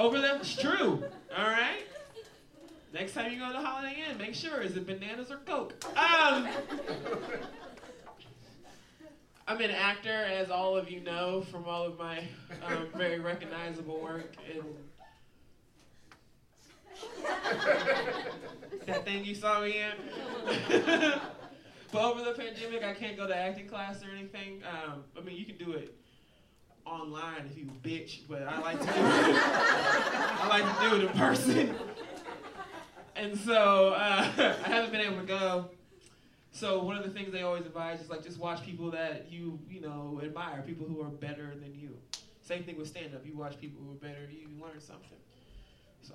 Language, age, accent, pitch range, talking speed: English, 20-39, American, 160-225 Hz, 165 wpm